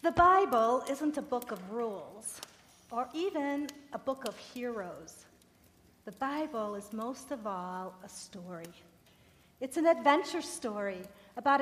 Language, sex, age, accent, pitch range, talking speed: English, female, 50-69, American, 215-295 Hz, 135 wpm